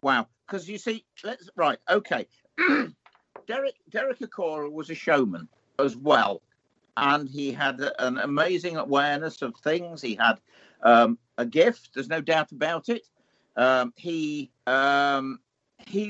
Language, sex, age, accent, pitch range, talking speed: English, male, 50-69, British, 140-215 Hz, 140 wpm